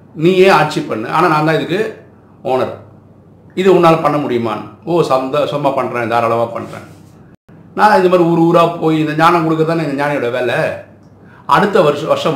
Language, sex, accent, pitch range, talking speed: Tamil, male, native, 115-165 Hz, 160 wpm